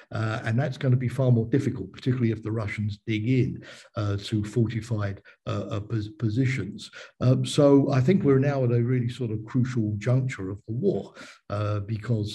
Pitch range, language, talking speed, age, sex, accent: 105-125 Hz, English, 185 wpm, 50-69, male, British